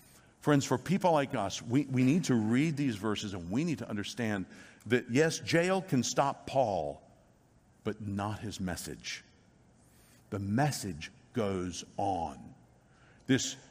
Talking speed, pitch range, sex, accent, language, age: 140 wpm, 130-180 Hz, male, American, English, 50-69